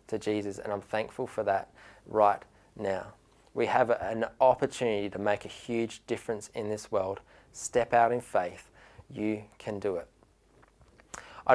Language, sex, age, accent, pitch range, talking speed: English, male, 20-39, Australian, 105-130 Hz, 155 wpm